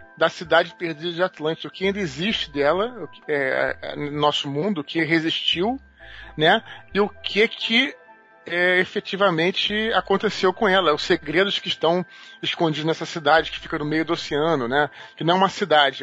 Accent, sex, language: Brazilian, male, English